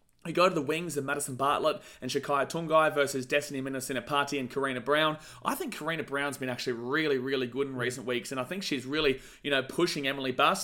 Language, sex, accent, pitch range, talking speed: English, male, Australian, 135-180 Hz, 230 wpm